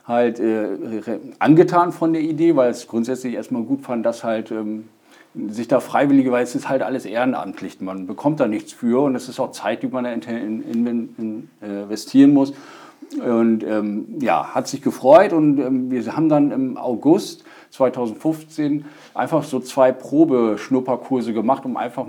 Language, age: German, 50-69